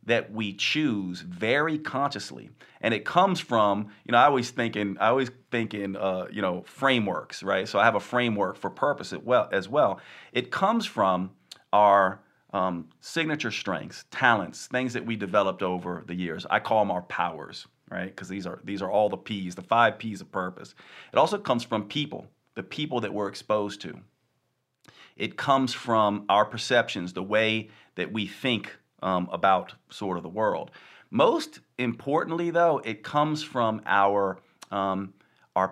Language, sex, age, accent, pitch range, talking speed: English, male, 40-59, American, 100-125 Hz, 175 wpm